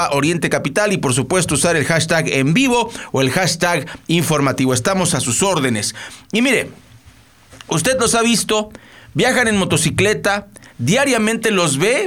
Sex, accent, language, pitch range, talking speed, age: male, Mexican, Spanish, 150-205 Hz, 150 wpm, 40-59